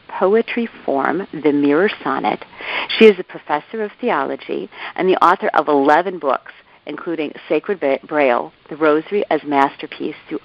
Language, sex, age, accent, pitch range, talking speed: English, female, 50-69, American, 140-170 Hz, 145 wpm